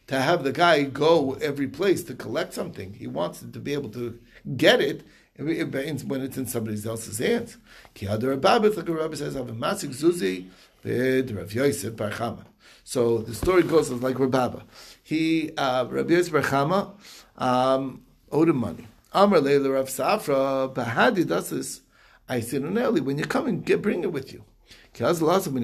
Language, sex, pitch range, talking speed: English, male, 130-180 Hz, 120 wpm